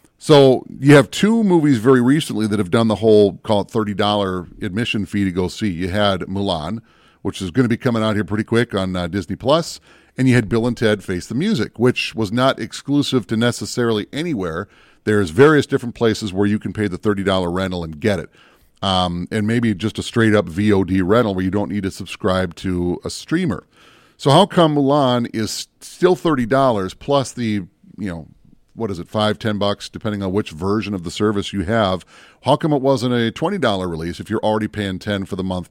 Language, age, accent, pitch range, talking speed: English, 40-59, American, 100-135 Hz, 210 wpm